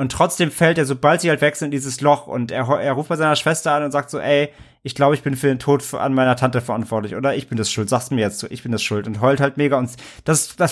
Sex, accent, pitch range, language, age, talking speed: male, German, 115-140 Hz, German, 30-49, 300 wpm